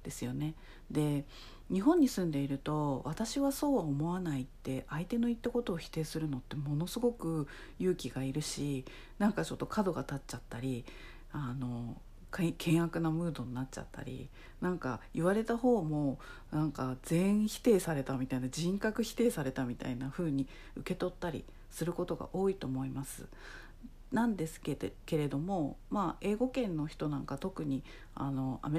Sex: female